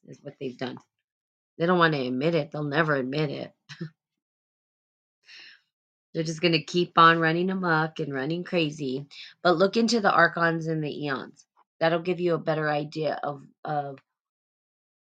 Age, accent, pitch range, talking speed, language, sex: 20-39, American, 150-175 Hz, 165 wpm, English, female